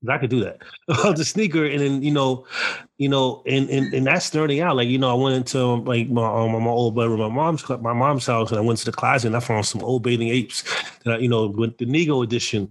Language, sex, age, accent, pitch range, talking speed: English, male, 30-49, American, 115-140 Hz, 265 wpm